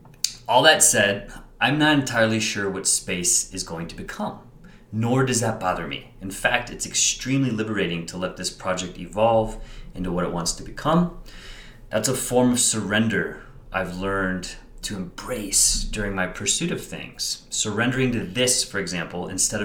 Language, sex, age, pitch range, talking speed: English, male, 30-49, 95-125 Hz, 165 wpm